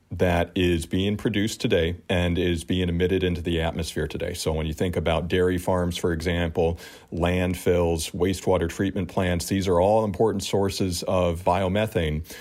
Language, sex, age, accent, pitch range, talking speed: English, male, 40-59, American, 85-100 Hz, 160 wpm